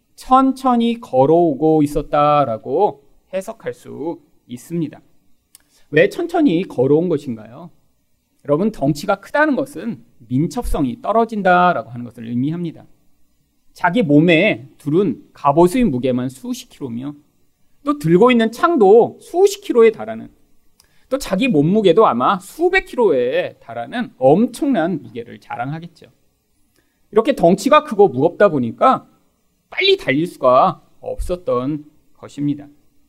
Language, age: Korean, 40-59